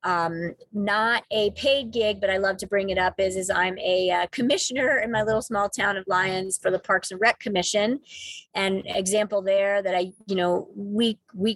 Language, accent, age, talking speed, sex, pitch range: English, American, 30-49, 200 wpm, female, 180-210 Hz